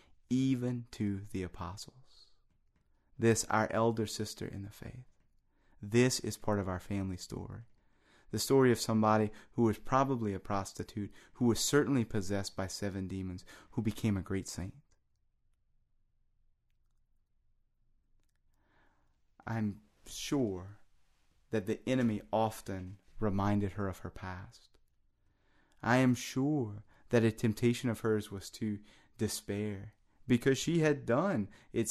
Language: English